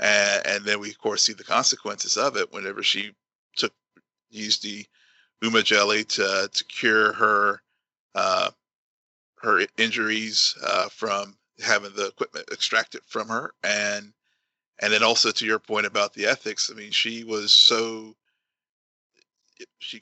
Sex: male